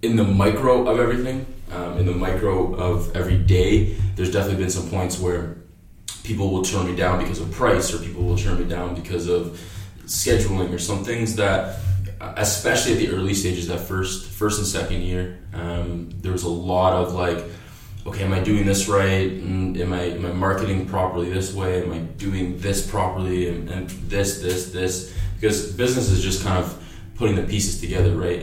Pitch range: 85-100 Hz